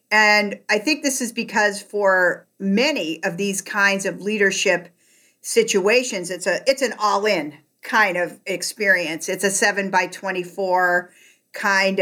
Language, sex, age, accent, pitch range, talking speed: English, female, 50-69, American, 180-200 Hz, 150 wpm